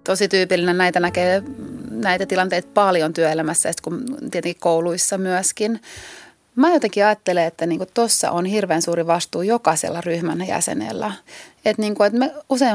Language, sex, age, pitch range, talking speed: Finnish, female, 30-49, 180-240 Hz, 130 wpm